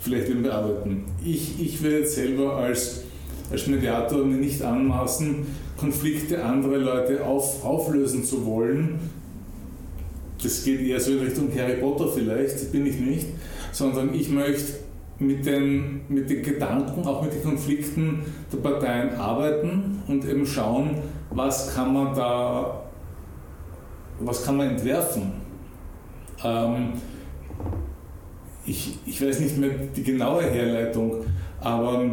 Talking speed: 125 wpm